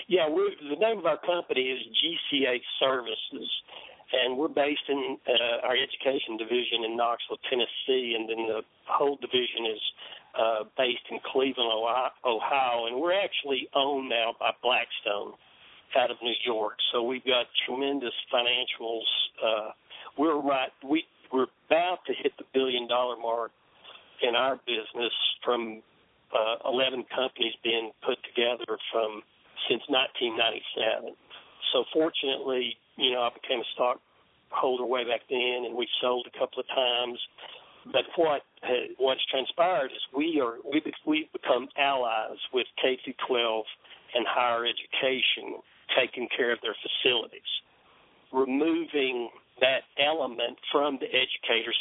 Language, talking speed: English, 140 wpm